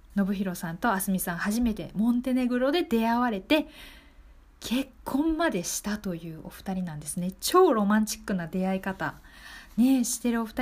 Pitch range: 190-270 Hz